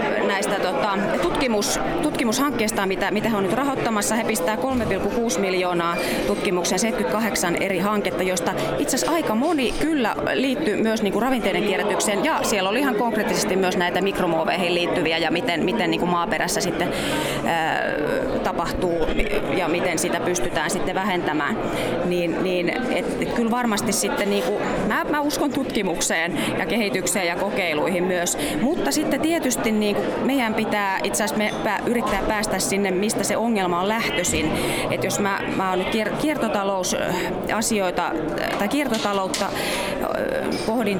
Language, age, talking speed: Finnish, 30-49, 140 wpm